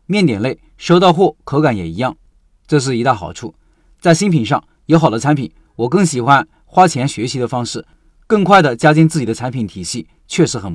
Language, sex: Chinese, male